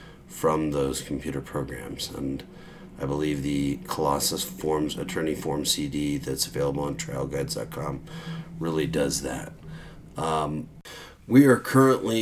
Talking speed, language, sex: 120 wpm, English, male